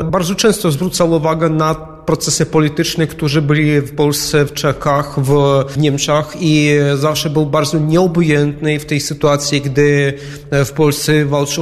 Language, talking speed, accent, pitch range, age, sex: Polish, 140 wpm, native, 145-155 Hz, 30-49, male